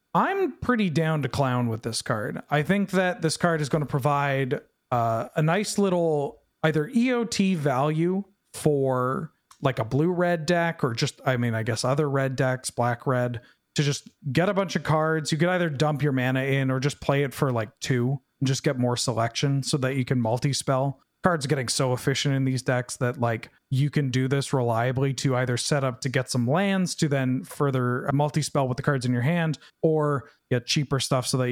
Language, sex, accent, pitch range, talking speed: English, male, American, 130-160 Hz, 210 wpm